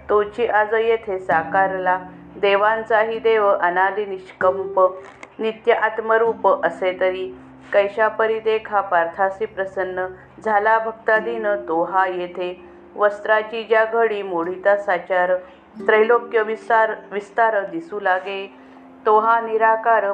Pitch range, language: 185-225 Hz, Marathi